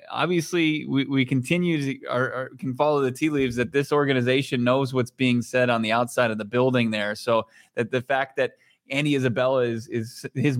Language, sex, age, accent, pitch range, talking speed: English, male, 20-39, American, 115-145 Hz, 205 wpm